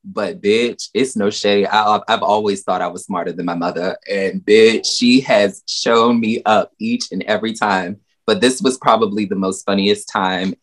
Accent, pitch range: American, 95-135 Hz